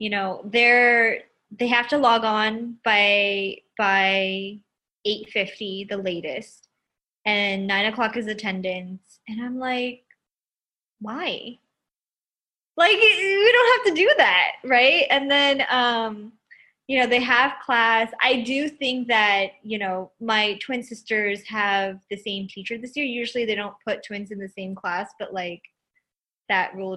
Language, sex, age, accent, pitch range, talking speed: English, female, 20-39, American, 195-235 Hz, 150 wpm